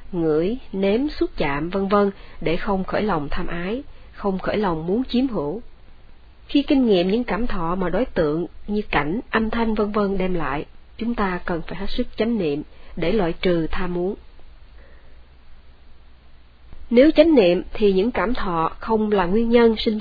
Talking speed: 180 wpm